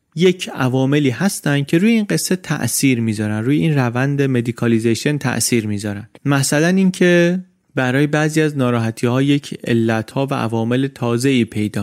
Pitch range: 115-150 Hz